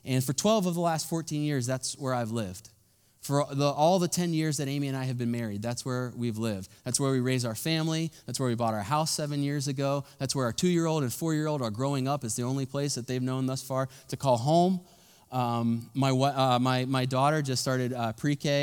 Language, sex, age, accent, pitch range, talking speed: English, male, 20-39, American, 115-145 Hz, 230 wpm